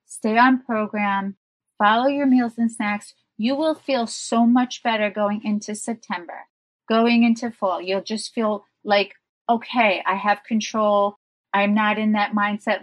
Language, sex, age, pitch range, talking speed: English, female, 30-49, 195-240 Hz, 155 wpm